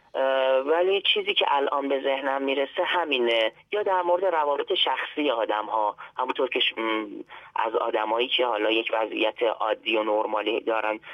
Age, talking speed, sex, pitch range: 30-49, 135 wpm, male, 110-140 Hz